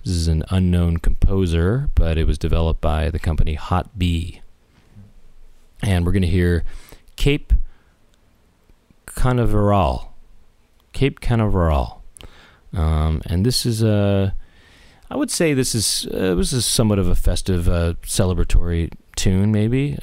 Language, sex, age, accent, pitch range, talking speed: English, male, 30-49, American, 85-110 Hz, 130 wpm